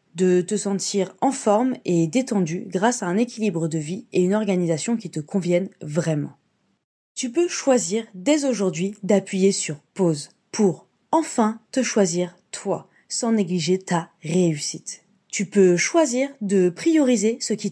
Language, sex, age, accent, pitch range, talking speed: French, female, 20-39, French, 185-235 Hz, 150 wpm